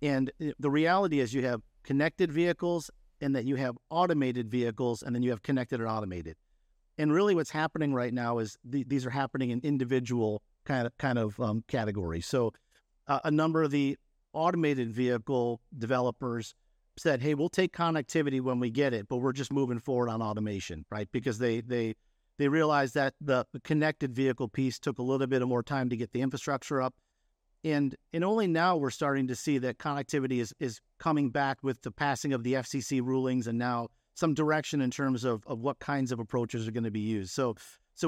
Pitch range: 120-150 Hz